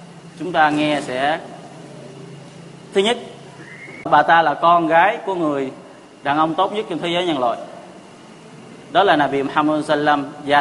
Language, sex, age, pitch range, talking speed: Vietnamese, male, 20-39, 145-170 Hz, 165 wpm